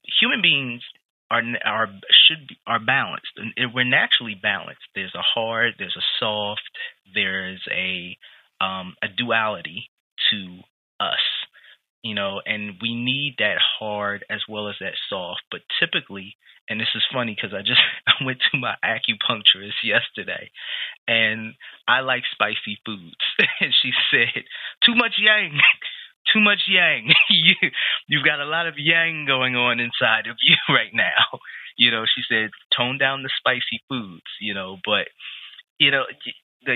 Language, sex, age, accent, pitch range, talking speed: English, male, 30-49, American, 105-130 Hz, 155 wpm